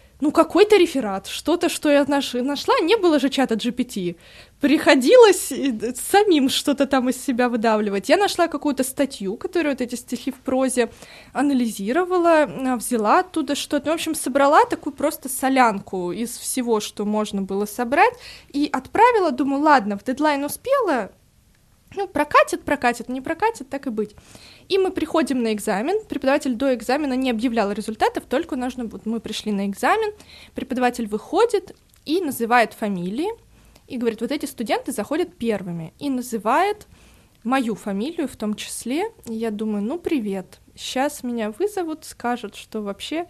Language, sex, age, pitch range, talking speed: Russian, female, 20-39, 230-315 Hz, 150 wpm